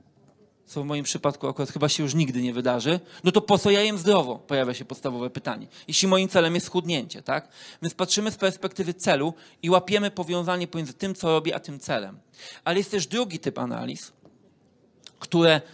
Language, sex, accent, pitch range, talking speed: Polish, male, native, 150-190 Hz, 190 wpm